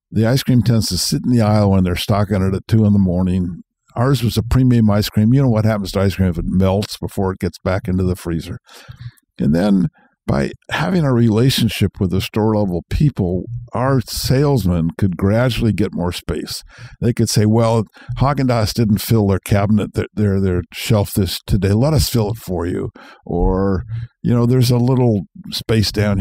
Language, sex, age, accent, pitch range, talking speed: English, male, 60-79, American, 95-120 Hz, 200 wpm